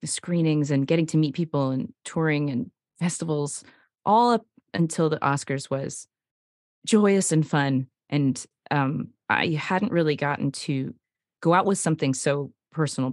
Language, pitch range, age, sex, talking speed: English, 140-170 Hz, 30-49, female, 150 wpm